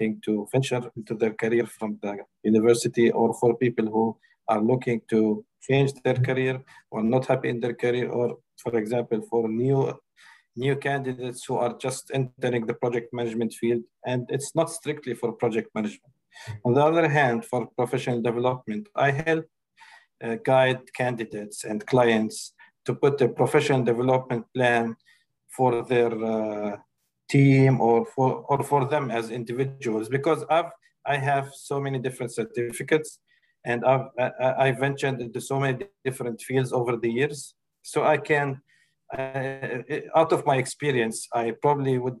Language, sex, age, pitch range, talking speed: English, male, 50-69, 115-140 Hz, 150 wpm